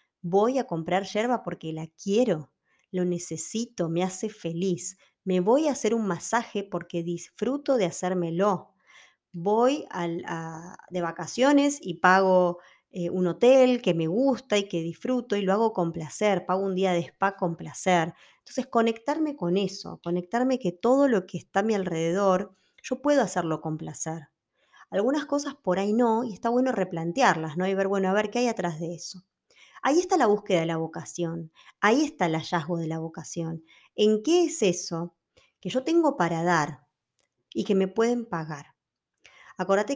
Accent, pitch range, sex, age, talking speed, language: Argentinian, 175-225 Hz, female, 20-39, 175 wpm, Spanish